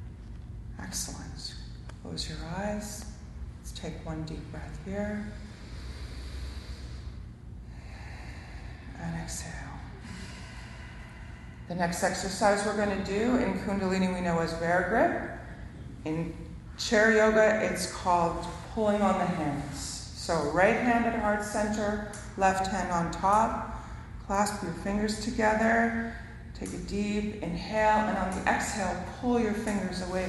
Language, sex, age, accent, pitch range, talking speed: English, female, 40-59, American, 140-210 Hz, 120 wpm